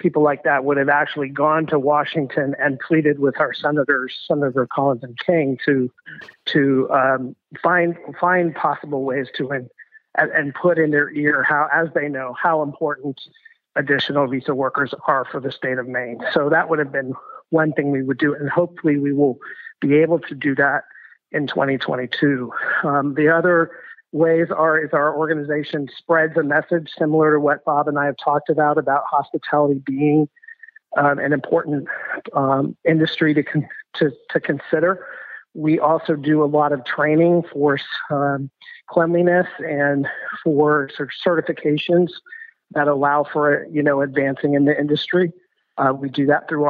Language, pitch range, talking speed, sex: English, 140-160 Hz, 170 wpm, male